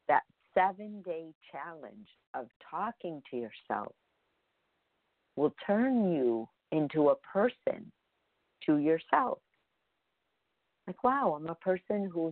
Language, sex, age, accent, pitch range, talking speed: English, female, 50-69, American, 140-185 Hz, 95 wpm